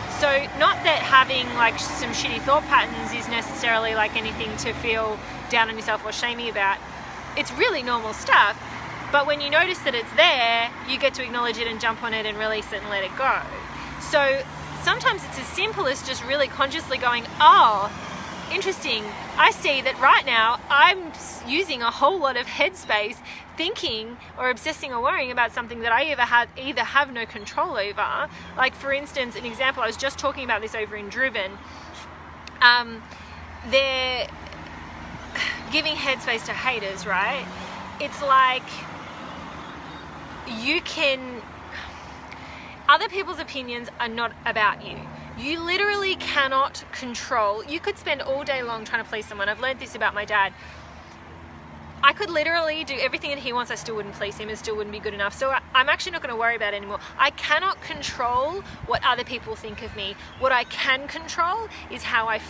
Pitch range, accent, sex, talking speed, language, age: 220-285 Hz, Australian, female, 180 wpm, English, 20-39